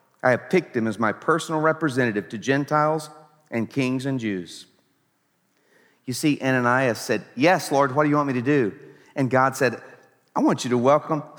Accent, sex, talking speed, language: American, male, 185 wpm, English